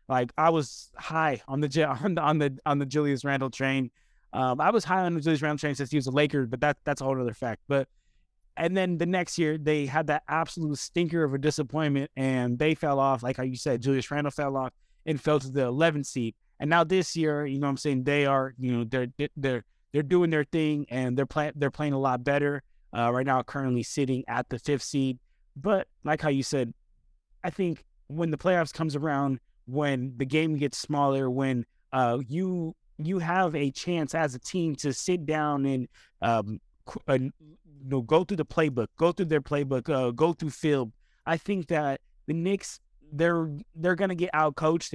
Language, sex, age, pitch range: English, male, 20-39, 135-160 Hz